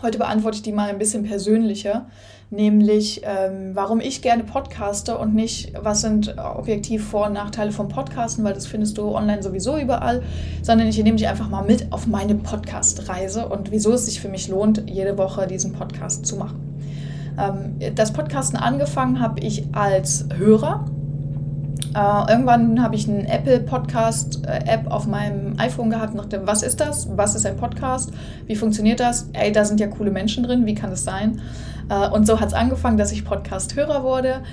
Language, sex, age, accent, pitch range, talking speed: German, female, 20-39, German, 195-215 Hz, 180 wpm